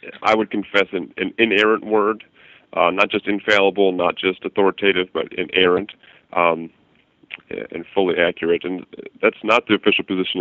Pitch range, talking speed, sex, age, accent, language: 90-100 Hz, 145 wpm, male, 30-49, American, English